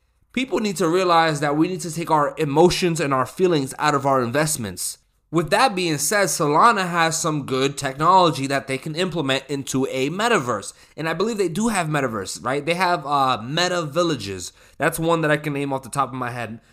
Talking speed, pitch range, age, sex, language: 210 wpm, 130-170 Hz, 20-39, male, English